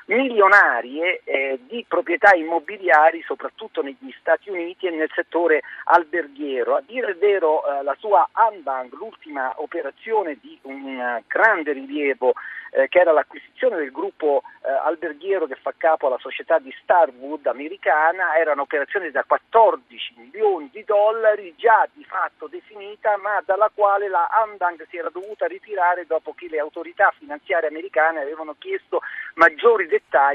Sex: male